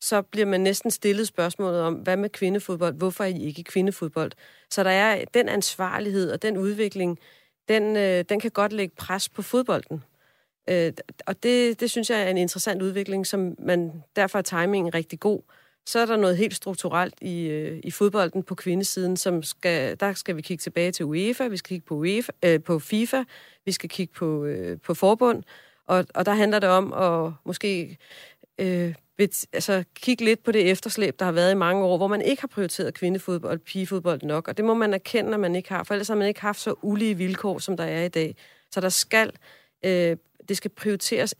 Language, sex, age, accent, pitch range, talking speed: Danish, female, 40-59, native, 175-205 Hz, 200 wpm